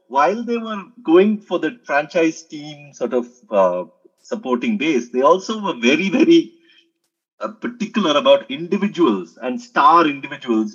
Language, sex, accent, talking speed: English, male, Indian, 140 wpm